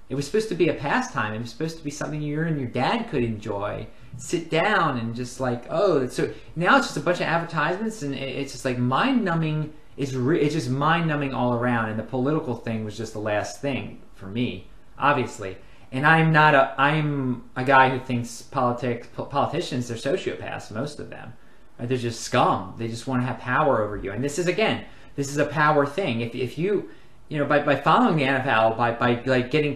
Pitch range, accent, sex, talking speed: 115-150 Hz, American, male, 220 wpm